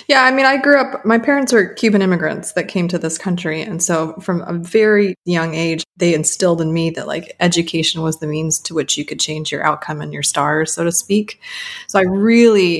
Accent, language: American, English